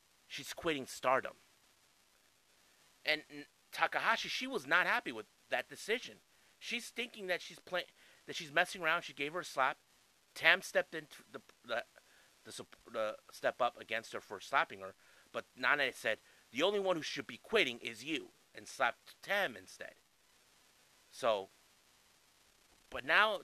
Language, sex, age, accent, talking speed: English, male, 30-49, American, 155 wpm